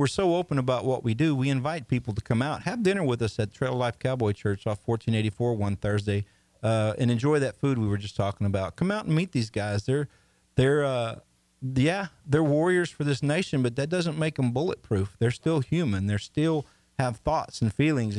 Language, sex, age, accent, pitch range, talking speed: English, male, 40-59, American, 110-135 Hz, 220 wpm